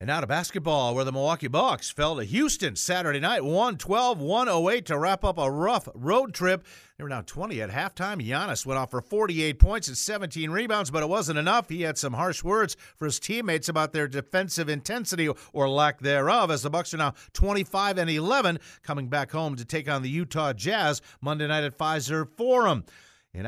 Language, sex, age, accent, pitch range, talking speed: English, male, 50-69, American, 145-185 Hz, 200 wpm